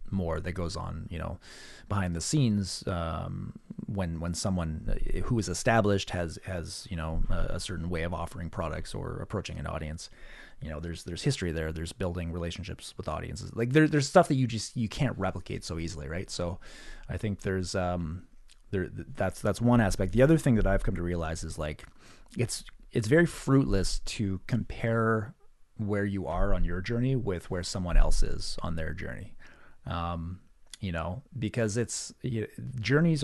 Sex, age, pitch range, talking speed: male, 30-49, 85-115 Hz, 180 wpm